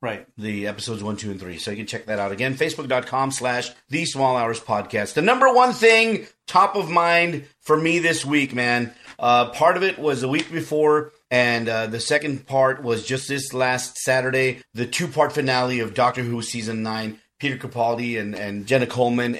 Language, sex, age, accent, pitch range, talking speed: English, male, 30-49, American, 115-140 Hz, 200 wpm